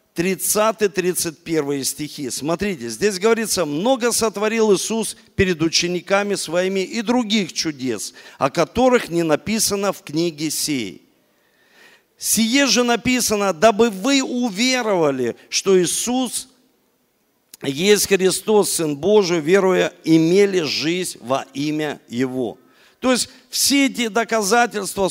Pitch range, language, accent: 175-235 Hz, Russian, native